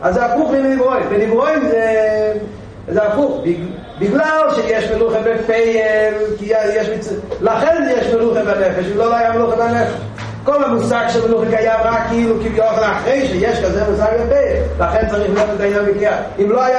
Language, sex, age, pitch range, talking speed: Hebrew, male, 40-59, 195-255 Hz, 95 wpm